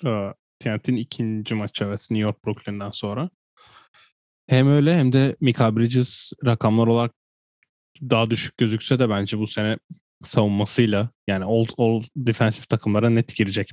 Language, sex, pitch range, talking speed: Turkish, male, 100-120 Hz, 140 wpm